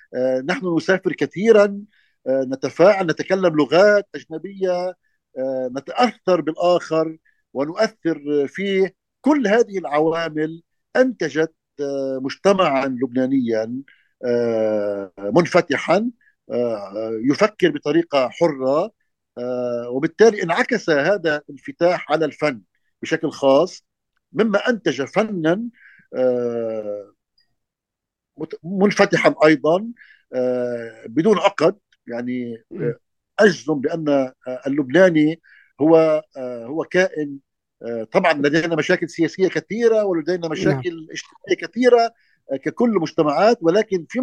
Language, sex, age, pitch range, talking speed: Arabic, male, 50-69, 135-190 Hz, 75 wpm